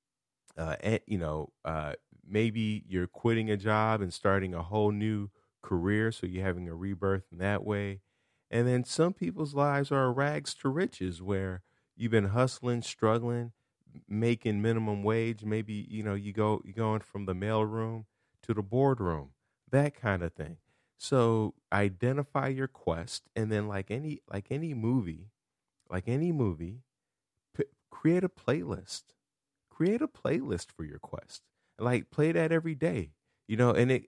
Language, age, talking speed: English, 30-49, 160 wpm